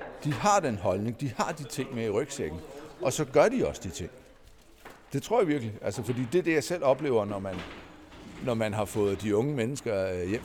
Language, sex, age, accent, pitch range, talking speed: Danish, male, 60-79, native, 110-145 Hz, 230 wpm